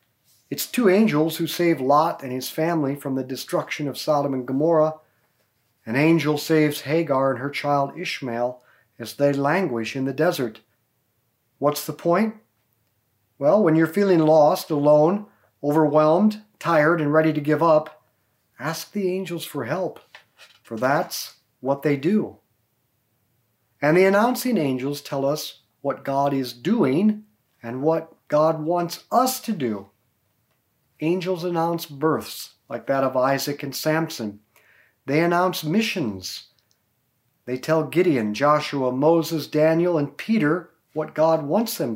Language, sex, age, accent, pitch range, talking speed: English, male, 40-59, American, 125-165 Hz, 140 wpm